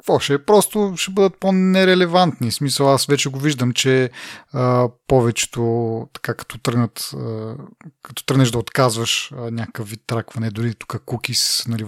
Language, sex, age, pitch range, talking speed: Bulgarian, male, 30-49, 120-155 Hz, 125 wpm